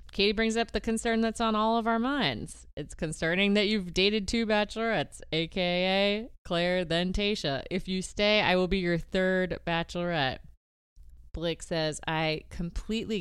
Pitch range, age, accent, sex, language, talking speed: 145-200 Hz, 30-49, American, female, English, 160 wpm